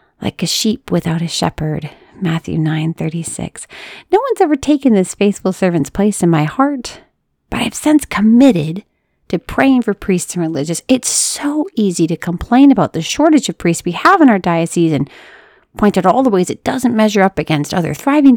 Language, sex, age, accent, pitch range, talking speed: English, female, 30-49, American, 165-245 Hz, 195 wpm